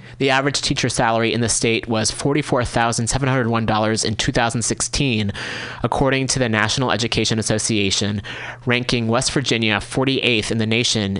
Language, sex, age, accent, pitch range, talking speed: English, male, 30-49, American, 110-130 Hz, 130 wpm